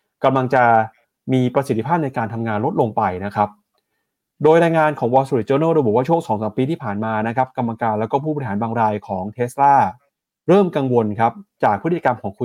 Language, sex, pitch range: Thai, male, 115-160 Hz